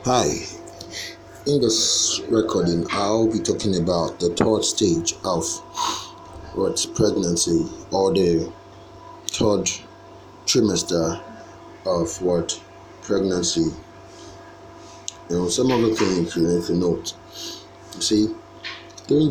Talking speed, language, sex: 105 wpm, English, male